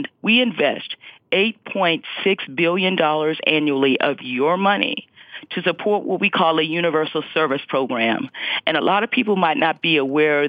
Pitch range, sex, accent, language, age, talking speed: 145-190 Hz, female, American, English, 40-59, 155 wpm